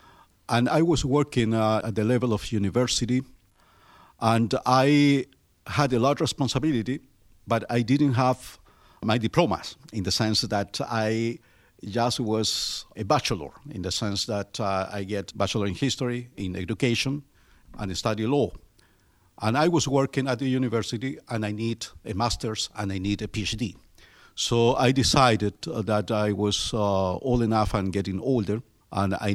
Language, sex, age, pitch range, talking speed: English, male, 50-69, 95-120 Hz, 160 wpm